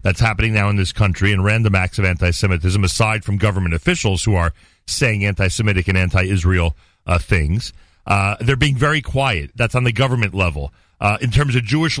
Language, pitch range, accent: English, 100-155 Hz, American